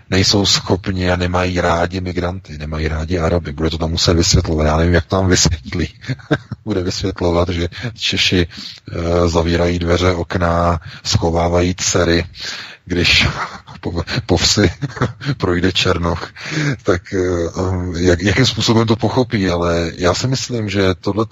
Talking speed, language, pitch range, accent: 130 wpm, Czech, 85-105 Hz, native